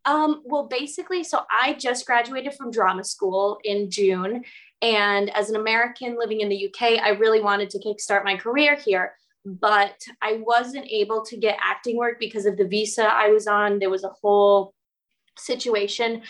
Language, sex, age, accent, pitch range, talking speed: English, female, 20-39, American, 195-225 Hz, 175 wpm